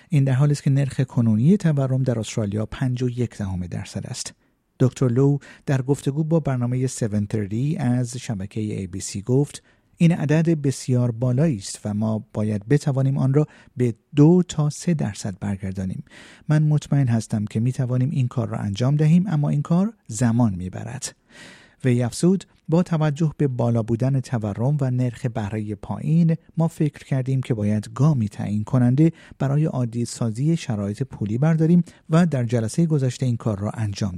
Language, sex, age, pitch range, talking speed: Persian, male, 50-69, 110-150 Hz, 160 wpm